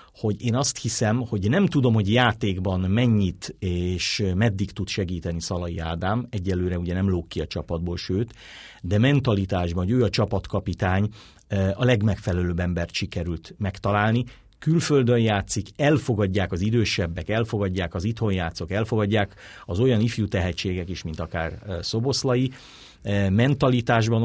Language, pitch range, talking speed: Hungarian, 95-120 Hz, 135 wpm